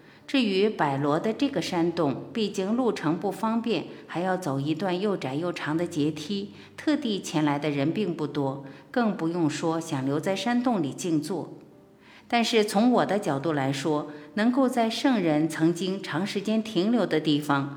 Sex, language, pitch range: female, Chinese, 150-210 Hz